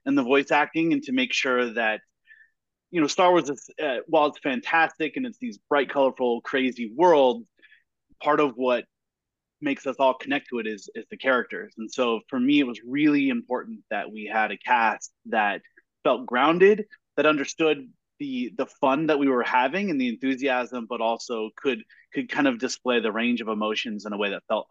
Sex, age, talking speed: male, 30-49, 200 wpm